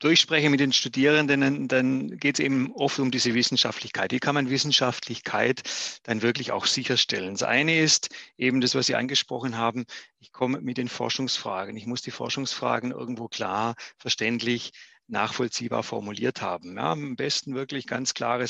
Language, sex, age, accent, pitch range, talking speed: German, male, 40-59, German, 125-145 Hz, 160 wpm